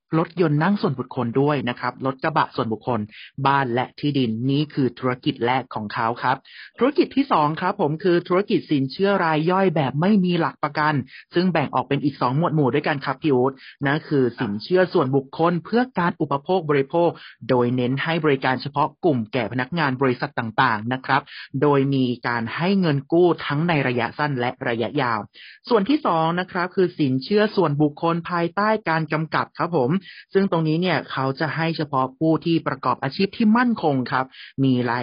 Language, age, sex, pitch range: Thai, 30-49, male, 130-170 Hz